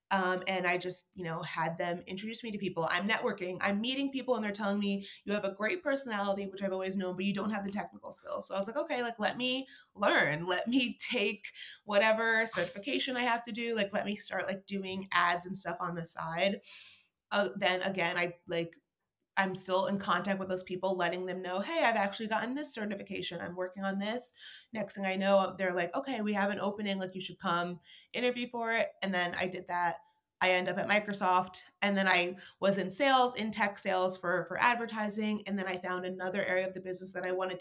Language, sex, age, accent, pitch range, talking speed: English, female, 30-49, American, 185-220 Hz, 230 wpm